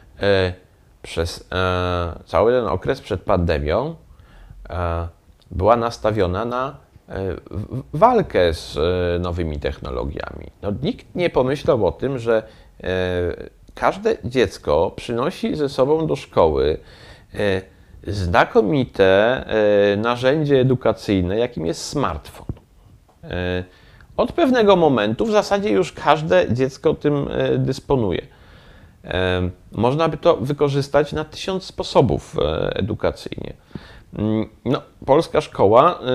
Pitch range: 95-135 Hz